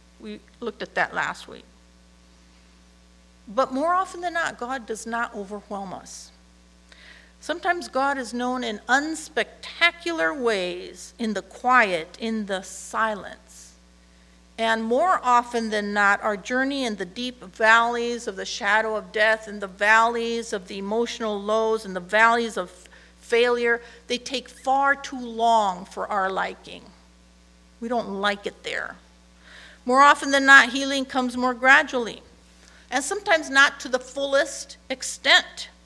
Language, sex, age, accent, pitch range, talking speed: English, female, 50-69, American, 170-255 Hz, 140 wpm